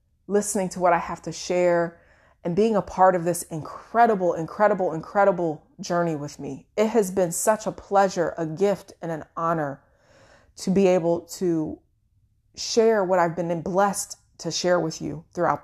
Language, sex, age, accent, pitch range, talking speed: English, female, 30-49, American, 165-195 Hz, 170 wpm